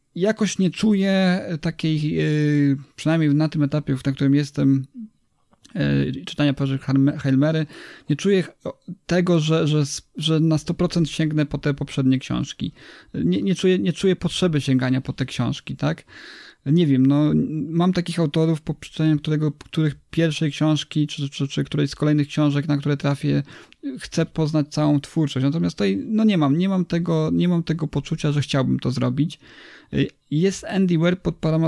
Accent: native